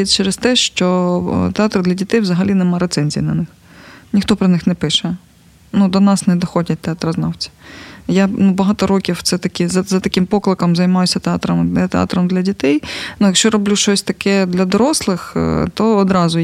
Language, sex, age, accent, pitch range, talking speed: Ukrainian, female, 20-39, native, 180-210 Hz, 165 wpm